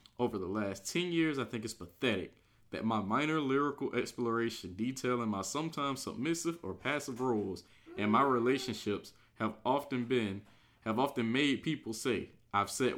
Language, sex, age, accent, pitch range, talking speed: English, male, 20-39, American, 105-130 Hz, 155 wpm